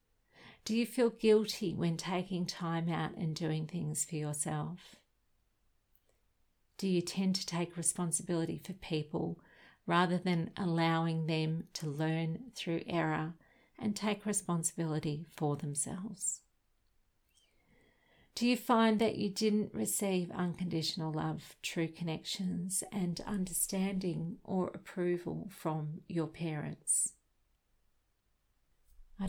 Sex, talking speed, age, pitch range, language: female, 110 wpm, 50-69, 160-195 Hz, English